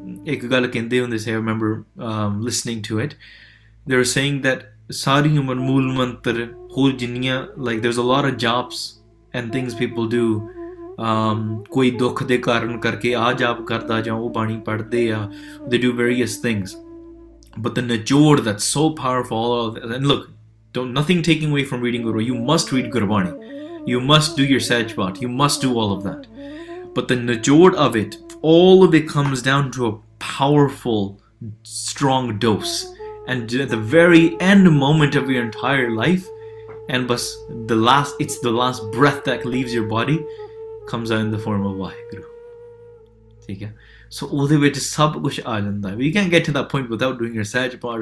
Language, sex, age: English, male, 20-39